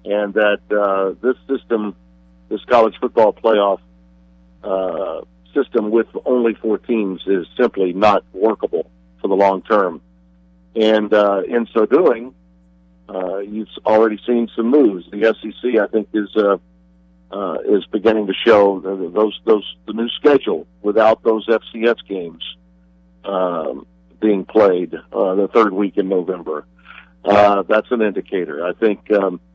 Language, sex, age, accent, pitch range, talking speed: English, male, 50-69, American, 95-120 Hz, 145 wpm